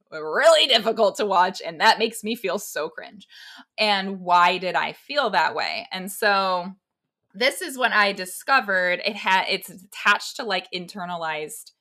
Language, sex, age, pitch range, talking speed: English, female, 20-39, 180-230 Hz, 165 wpm